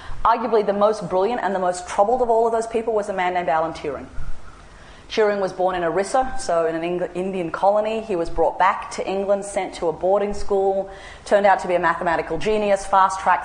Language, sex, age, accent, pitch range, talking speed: English, female, 30-49, Australian, 170-200 Hz, 215 wpm